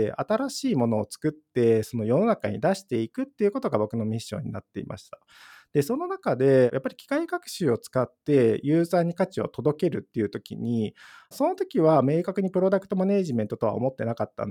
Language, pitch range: Japanese, 120-195 Hz